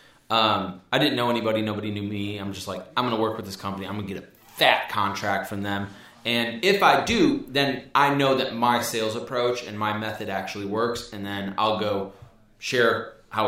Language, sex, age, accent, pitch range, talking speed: English, male, 20-39, American, 100-125 Hz, 220 wpm